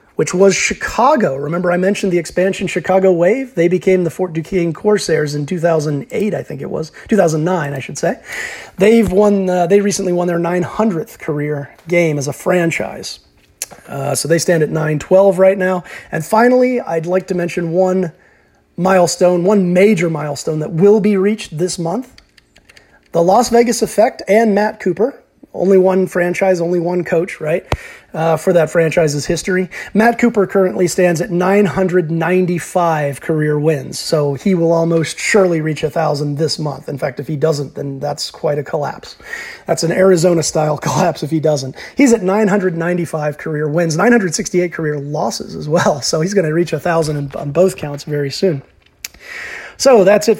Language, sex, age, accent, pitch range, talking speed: English, male, 30-49, American, 155-190 Hz, 170 wpm